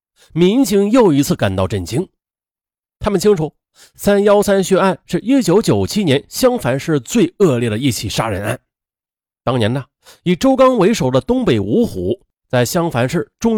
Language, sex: Chinese, male